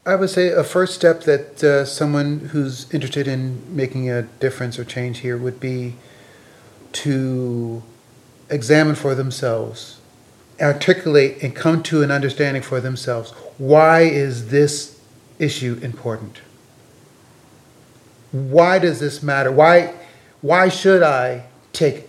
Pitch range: 125-160 Hz